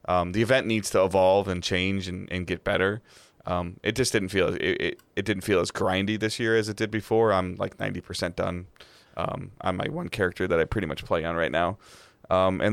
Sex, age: male, 20-39